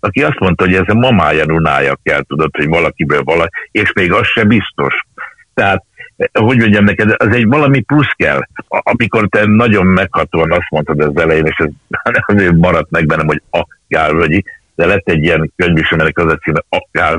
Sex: male